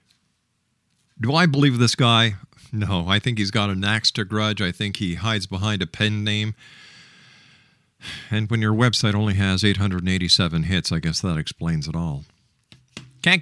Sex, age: male, 50-69